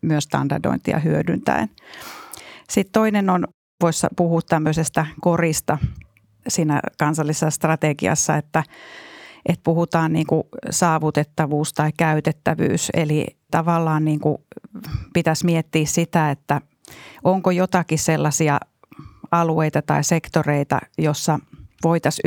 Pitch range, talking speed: 150-170 Hz, 90 wpm